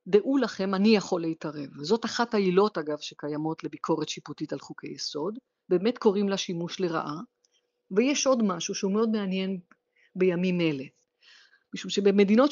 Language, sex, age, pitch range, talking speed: Hebrew, female, 50-69, 175-230 Hz, 145 wpm